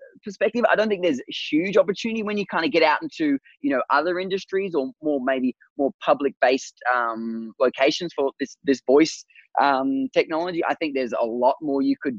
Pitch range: 125-180 Hz